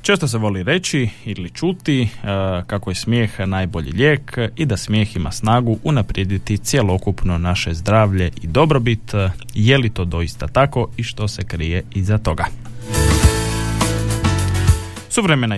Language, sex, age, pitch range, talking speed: Croatian, male, 20-39, 95-120 Hz, 135 wpm